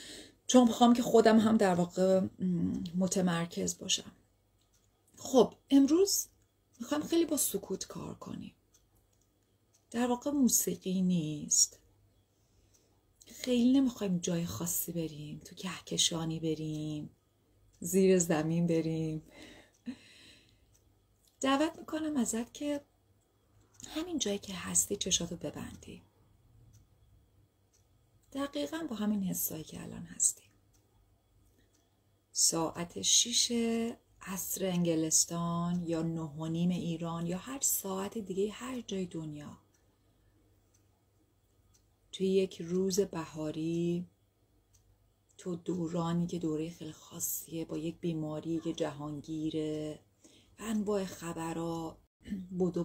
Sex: female